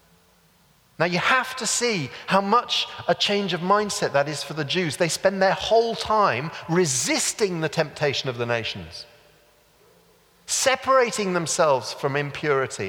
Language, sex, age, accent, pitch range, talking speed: English, male, 40-59, British, 155-225 Hz, 145 wpm